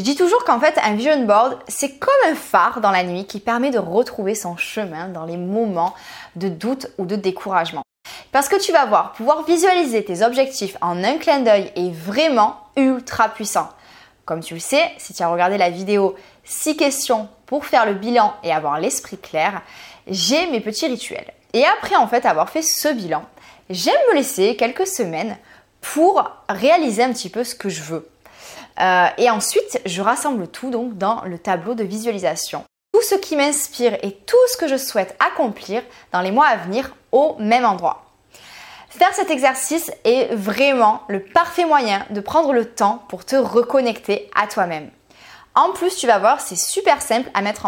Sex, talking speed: female, 190 wpm